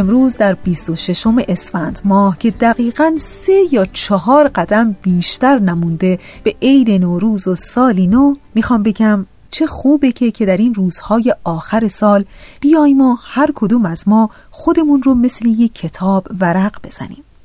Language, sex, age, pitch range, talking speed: Persian, female, 30-49, 195-265 Hz, 155 wpm